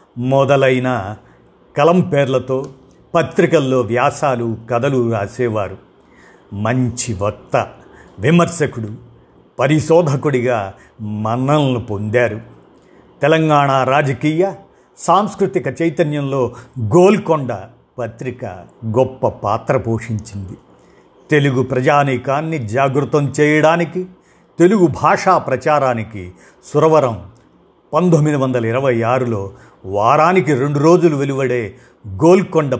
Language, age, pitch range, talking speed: Telugu, 50-69, 120-155 Hz, 70 wpm